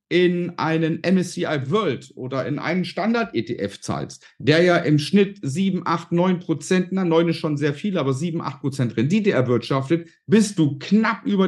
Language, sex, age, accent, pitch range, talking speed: German, male, 50-69, German, 145-195 Hz, 165 wpm